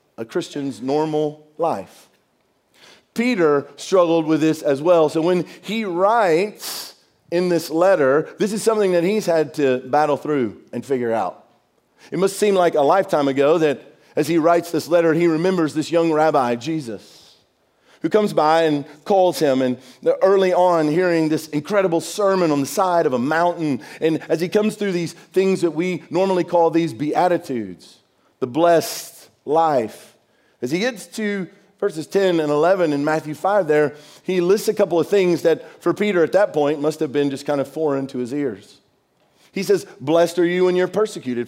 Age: 40-59